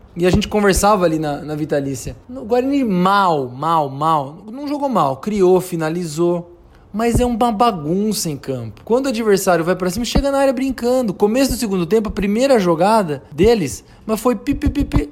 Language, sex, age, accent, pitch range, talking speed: Portuguese, male, 20-39, Brazilian, 150-230 Hz, 180 wpm